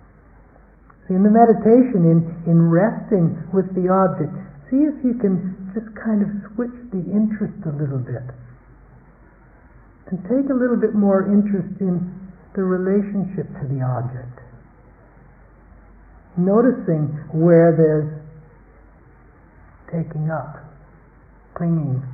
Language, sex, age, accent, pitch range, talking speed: English, male, 60-79, American, 145-190 Hz, 110 wpm